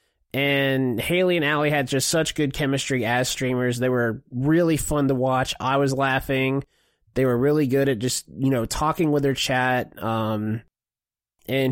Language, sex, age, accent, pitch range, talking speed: English, male, 20-39, American, 120-150 Hz, 175 wpm